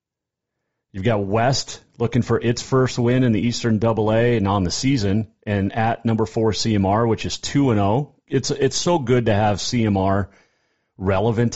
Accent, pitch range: American, 95-120 Hz